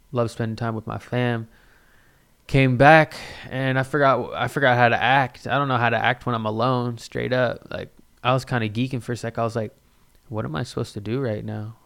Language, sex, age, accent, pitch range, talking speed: English, male, 20-39, American, 115-135 Hz, 240 wpm